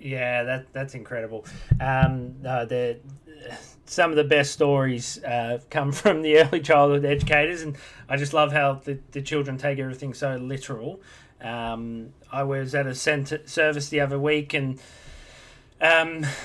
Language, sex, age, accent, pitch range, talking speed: English, male, 30-49, Australian, 125-150 Hz, 155 wpm